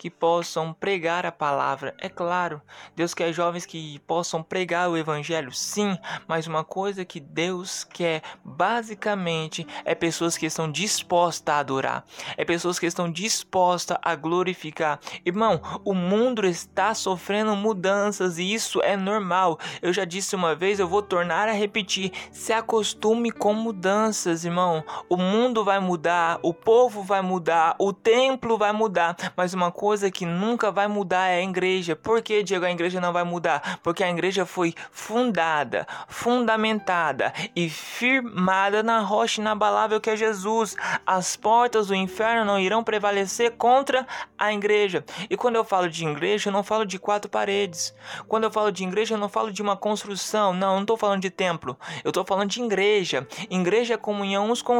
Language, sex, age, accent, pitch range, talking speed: Portuguese, male, 20-39, Brazilian, 175-215 Hz, 170 wpm